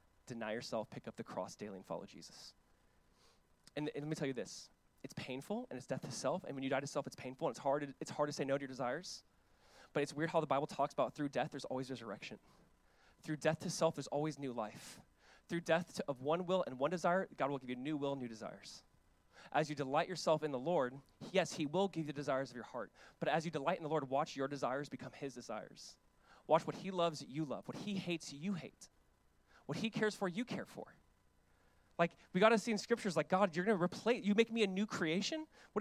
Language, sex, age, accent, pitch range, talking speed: English, male, 20-39, American, 135-195 Hz, 255 wpm